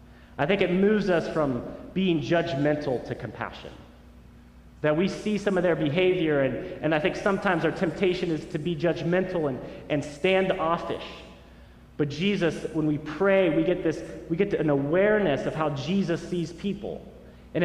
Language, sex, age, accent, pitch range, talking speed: English, male, 30-49, American, 140-185 Hz, 165 wpm